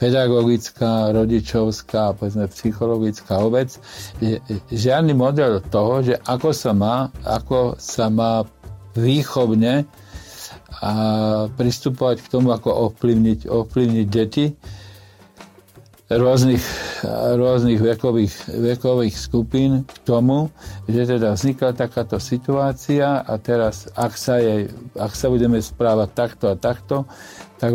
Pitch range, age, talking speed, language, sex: 110-130 Hz, 50-69, 100 wpm, Slovak, male